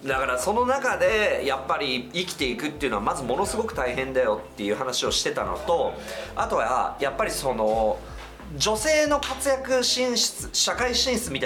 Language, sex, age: Japanese, male, 40-59